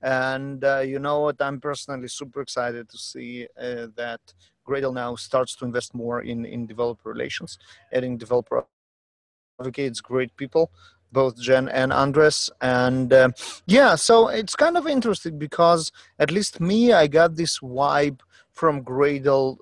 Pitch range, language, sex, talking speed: 125-155 Hz, English, male, 155 wpm